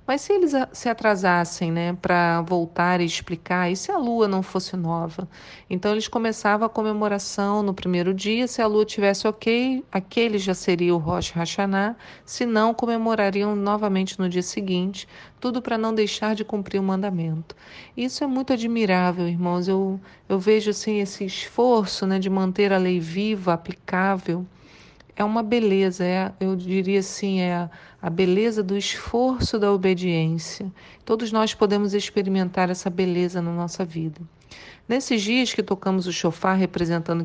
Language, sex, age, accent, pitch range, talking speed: Portuguese, female, 40-59, Brazilian, 180-220 Hz, 160 wpm